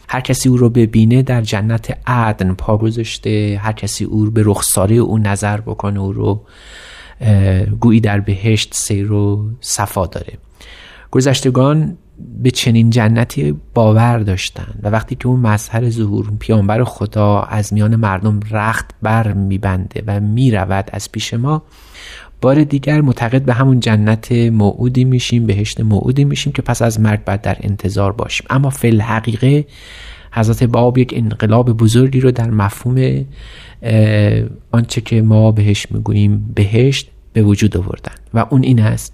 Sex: male